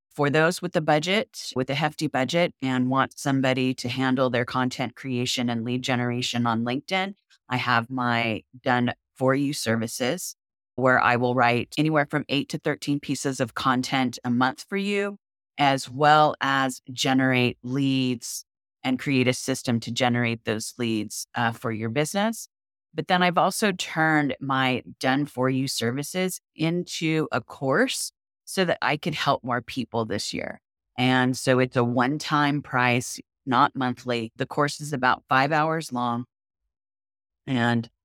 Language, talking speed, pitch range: English, 150 wpm, 120-145 Hz